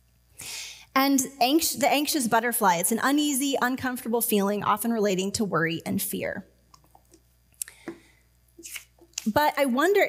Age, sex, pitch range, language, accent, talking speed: 20-39, female, 190-250 Hz, English, American, 115 wpm